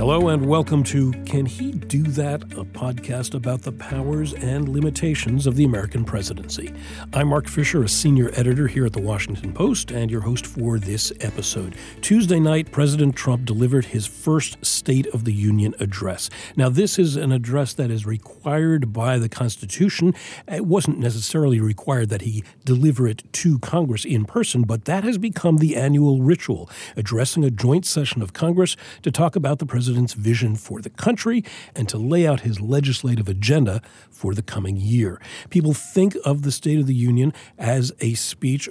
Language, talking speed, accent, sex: English, 180 wpm, American, male